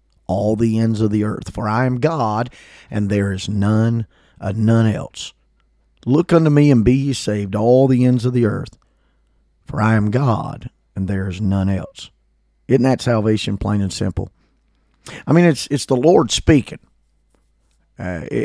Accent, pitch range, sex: American, 100-135 Hz, male